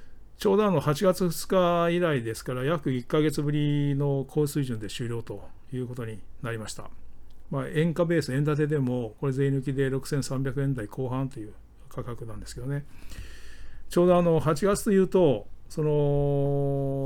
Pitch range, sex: 125-155 Hz, male